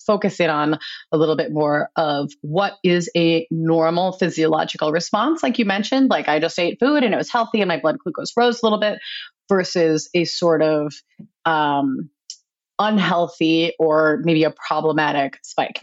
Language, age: English, 30-49